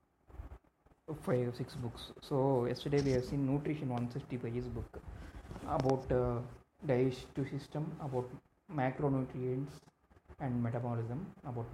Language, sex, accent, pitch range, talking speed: Telugu, male, native, 120-135 Hz, 110 wpm